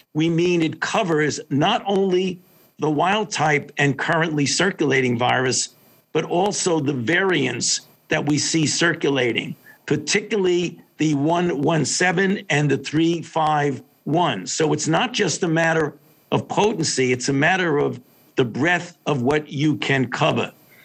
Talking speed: 130 wpm